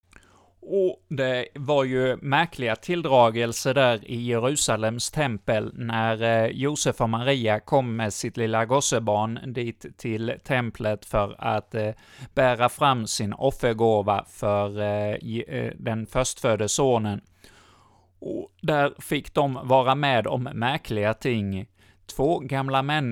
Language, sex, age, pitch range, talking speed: Swedish, male, 30-49, 110-140 Hz, 110 wpm